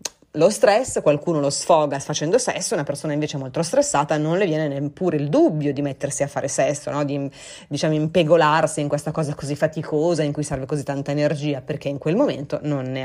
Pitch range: 140-175 Hz